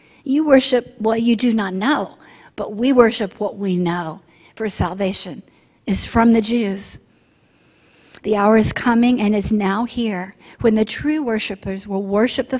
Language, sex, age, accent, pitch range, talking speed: English, female, 50-69, American, 200-250 Hz, 160 wpm